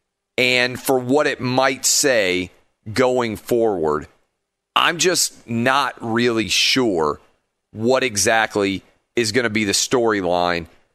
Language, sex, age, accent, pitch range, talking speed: English, male, 40-59, American, 105-130 Hz, 115 wpm